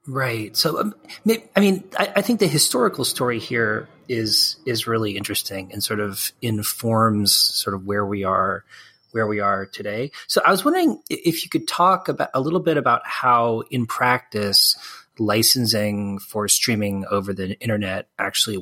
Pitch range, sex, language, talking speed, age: 105-140 Hz, male, English, 170 wpm, 30-49